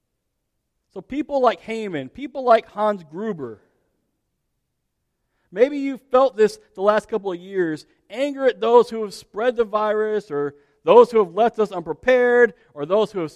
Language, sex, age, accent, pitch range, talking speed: English, male, 40-59, American, 170-240 Hz, 160 wpm